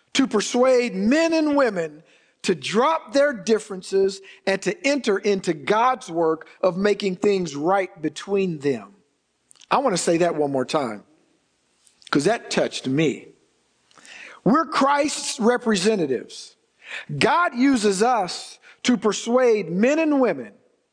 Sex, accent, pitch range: male, American, 180-240 Hz